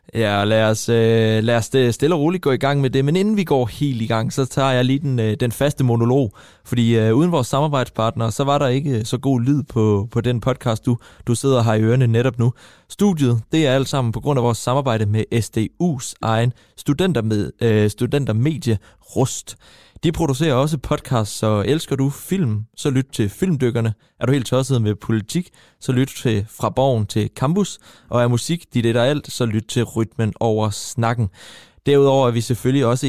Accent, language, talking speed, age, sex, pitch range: native, Danish, 200 wpm, 20-39, male, 110-135 Hz